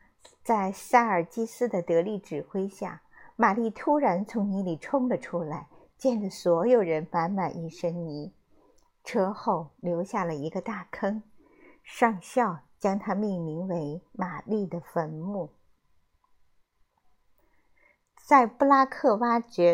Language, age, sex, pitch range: Chinese, 50-69, female, 175-235 Hz